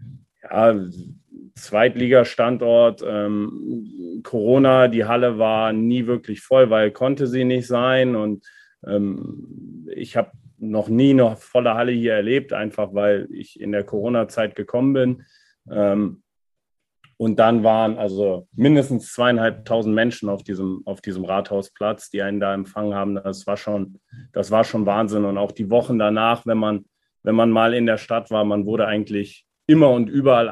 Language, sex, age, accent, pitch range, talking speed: German, male, 40-59, German, 105-115 Hz, 155 wpm